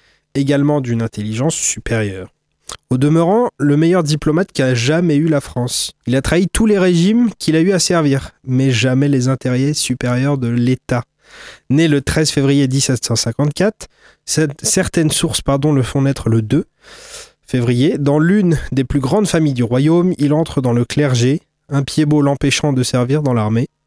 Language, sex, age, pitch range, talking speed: French, male, 20-39, 130-155 Hz, 170 wpm